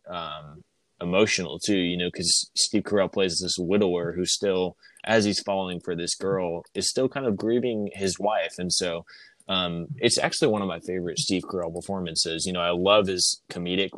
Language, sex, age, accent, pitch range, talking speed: English, male, 20-39, American, 90-105 Hz, 190 wpm